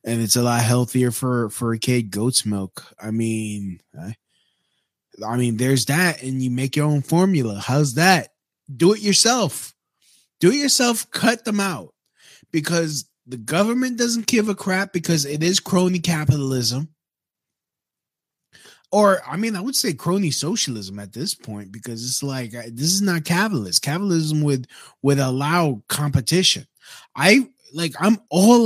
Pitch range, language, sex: 130-185 Hz, English, male